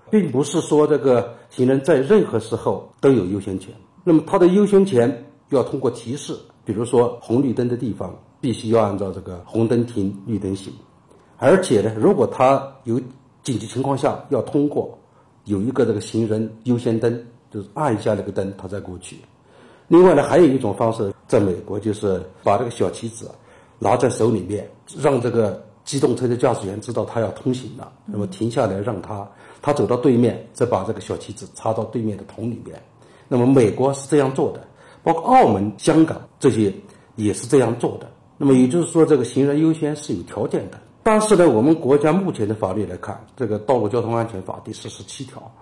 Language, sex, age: Chinese, male, 60-79